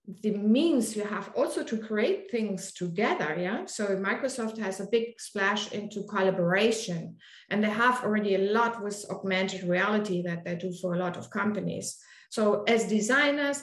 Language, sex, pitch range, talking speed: English, female, 205-250 Hz, 165 wpm